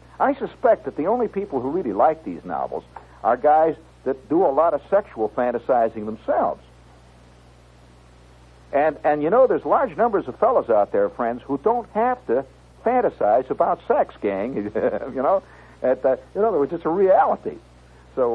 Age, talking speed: 60-79, 170 wpm